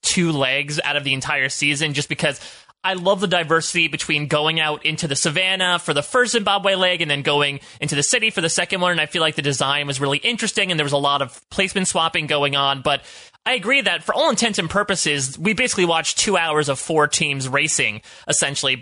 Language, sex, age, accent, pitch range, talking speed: English, male, 30-49, American, 145-180 Hz, 230 wpm